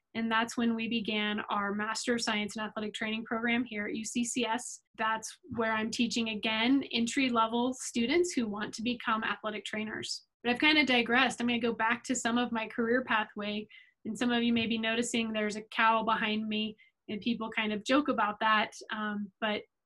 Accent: American